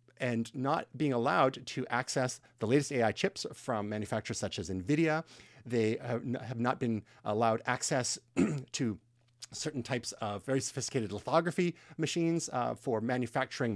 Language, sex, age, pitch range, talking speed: English, male, 30-49, 115-150 Hz, 140 wpm